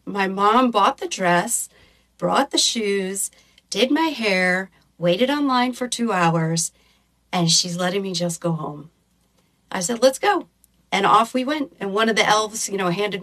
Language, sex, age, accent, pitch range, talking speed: English, female, 40-59, American, 185-260 Hz, 175 wpm